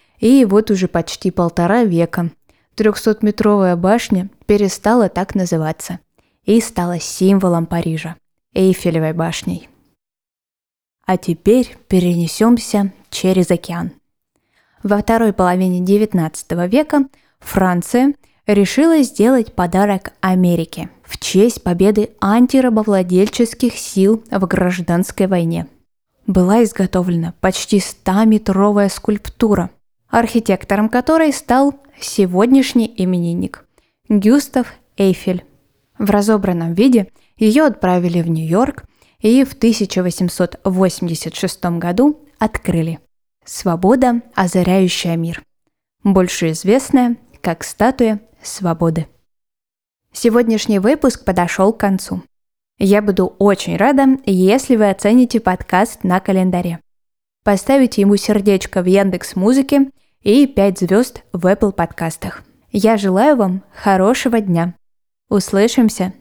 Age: 20-39